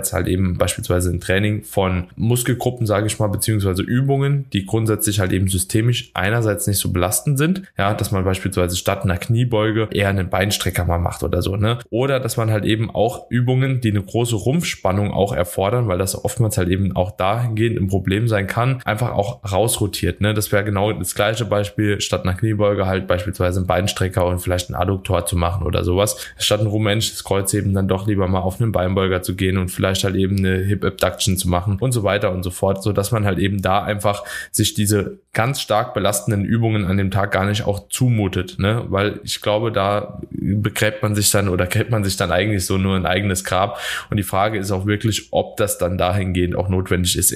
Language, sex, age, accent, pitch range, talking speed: German, male, 20-39, German, 95-110 Hz, 210 wpm